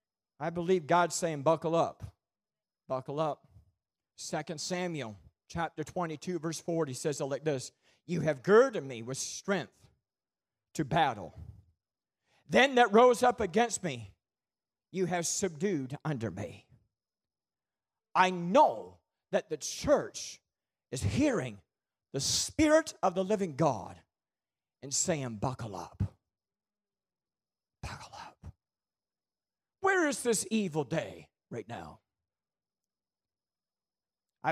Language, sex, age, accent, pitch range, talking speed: English, male, 40-59, American, 135-205 Hz, 110 wpm